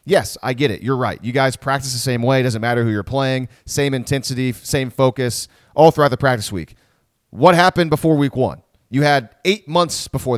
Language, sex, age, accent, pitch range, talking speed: English, male, 30-49, American, 120-155 Hz, 215 wpm